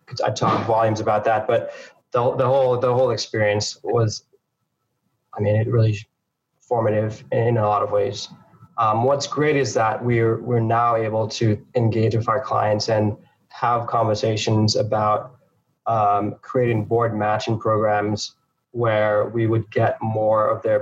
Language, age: English, 20-39